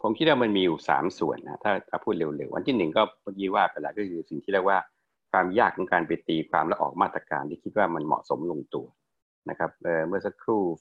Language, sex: Thai, male